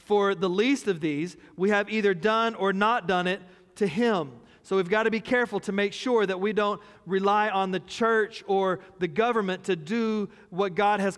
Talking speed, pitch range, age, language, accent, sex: 210 wpm, 185-220 Hz, 40-59, English, American, male